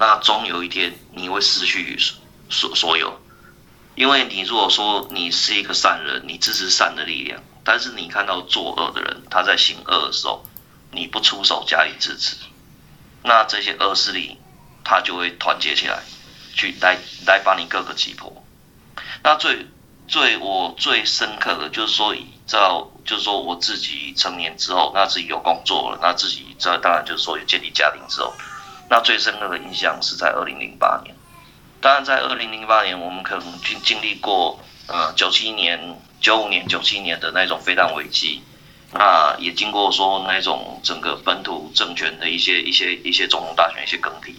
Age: 30-49